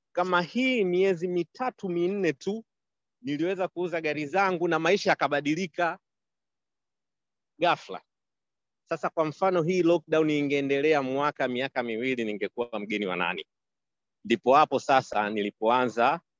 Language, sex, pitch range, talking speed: English, male, 125-170 Hz, 115 wpm